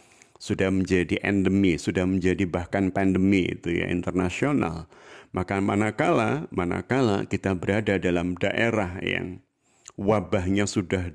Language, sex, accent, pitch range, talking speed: Indonesian, male, native, 90-110 Hz, 110 wpm